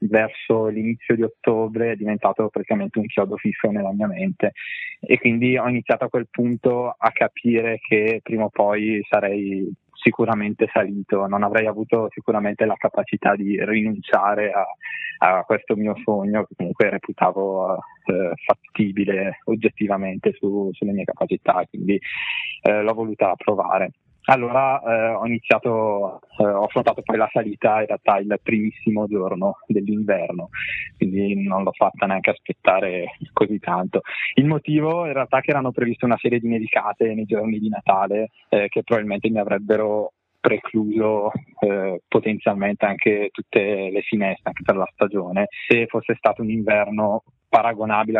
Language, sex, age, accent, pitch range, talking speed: Italian, male, 20-39, native, 105-115 Hz, 145 wpm